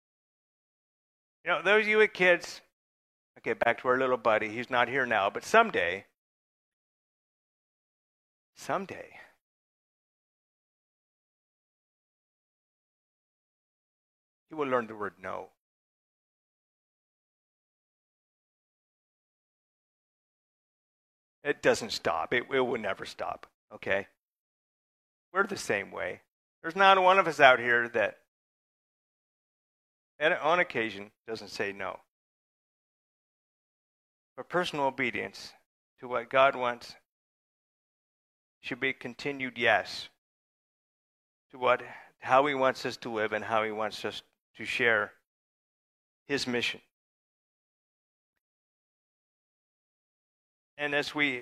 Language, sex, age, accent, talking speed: English, male, 40-59, American, 100 wpm